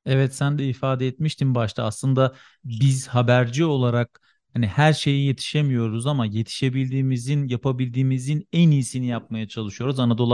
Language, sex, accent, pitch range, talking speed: Turkish, male, native, 120-140 Hz, 130 wpm